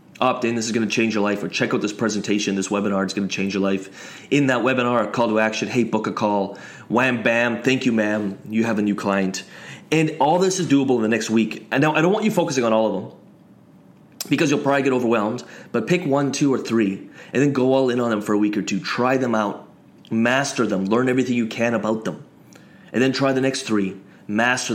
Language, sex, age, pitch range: English, male, 30-49, 110-135 Hz